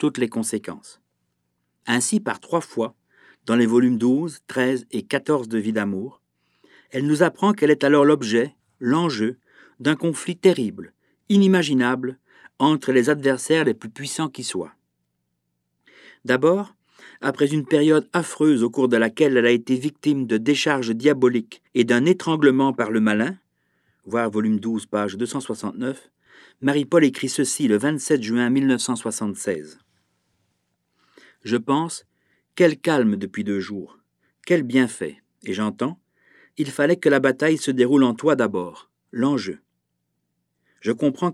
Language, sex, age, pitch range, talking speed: French, male, 50-69, 115-150 Hz, 140 wpm